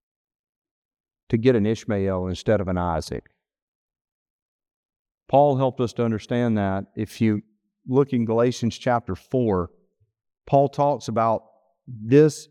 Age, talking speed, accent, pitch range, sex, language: 40-59, 120 wpm, American, 120-180 Hz, male, English